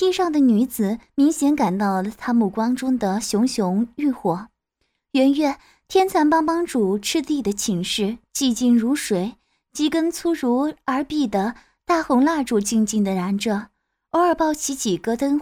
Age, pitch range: 20-39, 220-295 Hz